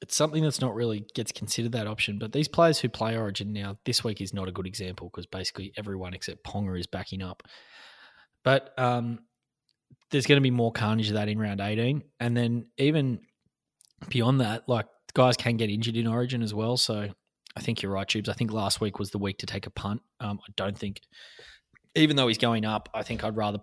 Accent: Australian